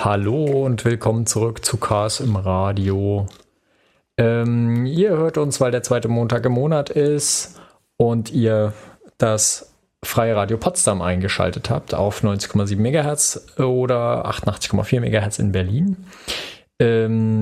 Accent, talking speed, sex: German, 125 wpm, male